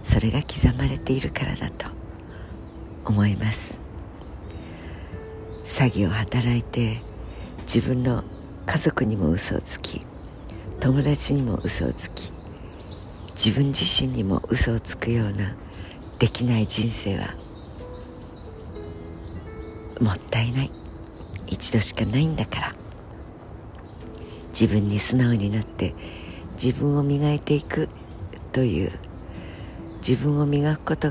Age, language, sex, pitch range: 60-79, Japanese, female, 90-130 Hz